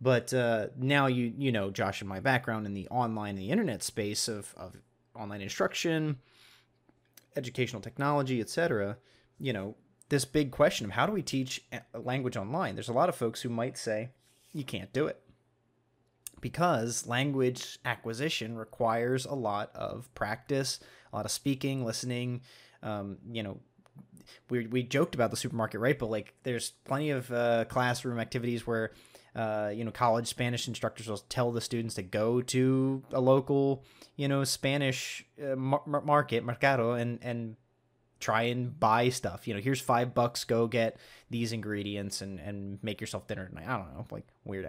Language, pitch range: English, 110-130 Hz